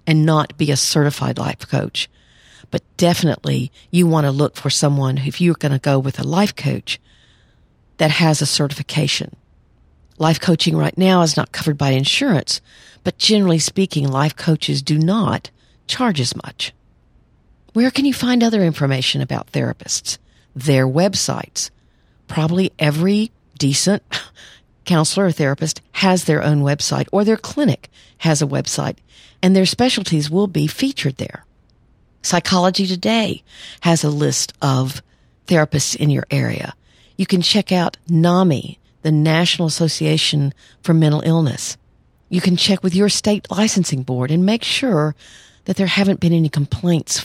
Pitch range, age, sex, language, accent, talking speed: 145-185 Hz, 50-69, female, English, American, 150 wpm